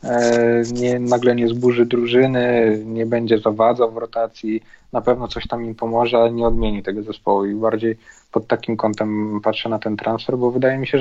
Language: Polish